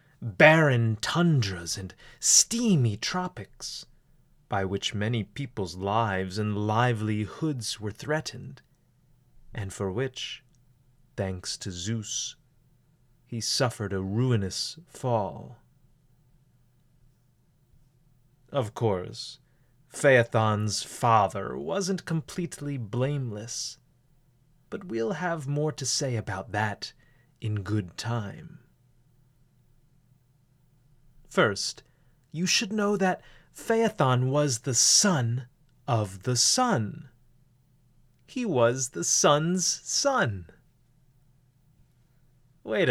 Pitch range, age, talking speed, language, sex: 120-145 Hz, 30-49, 85 wpm, English, male